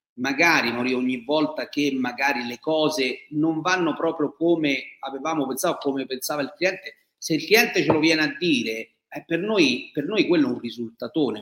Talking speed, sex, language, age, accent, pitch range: 180 wpm, male, Italian, 40-59, native, 135-205 Hz